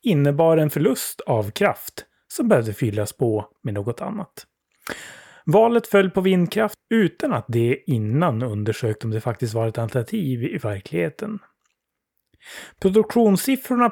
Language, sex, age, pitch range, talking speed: Swedish, male, 30-49, 115-180 Hz, 130 wpm